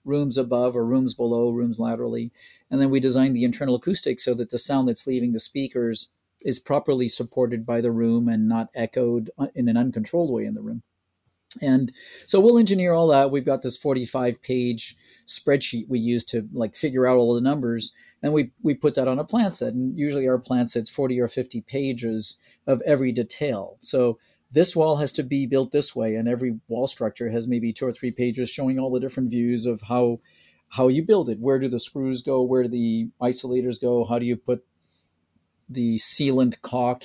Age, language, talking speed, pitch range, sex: 40-59, English, 205 wpm, 115-135 Hz, male